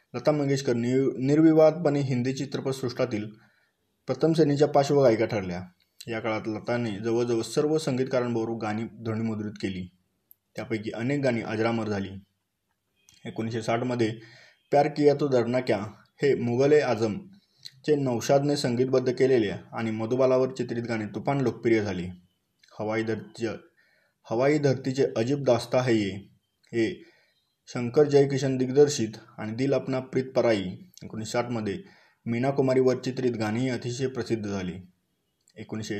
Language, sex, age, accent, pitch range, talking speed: Marathi, male, 20-39, native, 110-135 Hz, 110 wpm